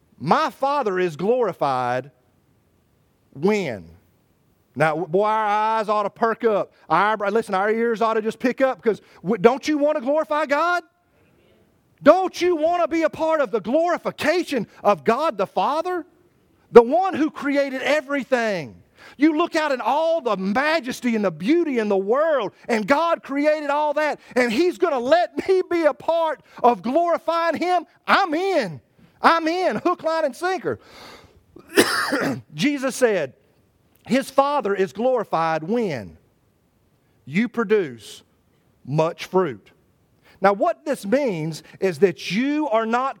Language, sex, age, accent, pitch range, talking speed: English, male, 40-59, American, 205-300 Hz, 145 wpm